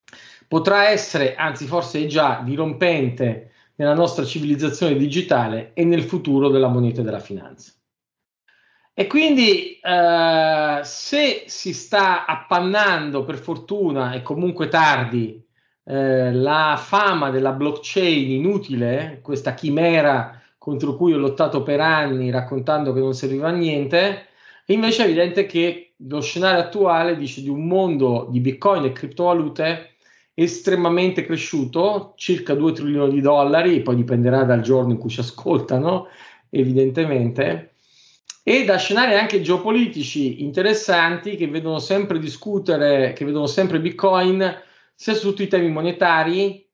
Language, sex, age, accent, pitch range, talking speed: Italian, male, 40-59, native, 135-180 Hz, 130 wpm